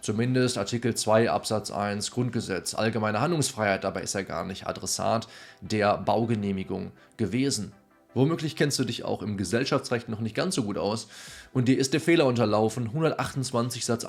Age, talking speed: 20-39, 160 wpm